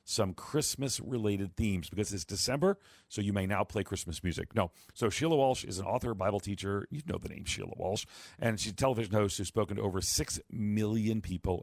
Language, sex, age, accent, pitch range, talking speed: English, male, 40-59, American, 95-120 Hz, 205 wpm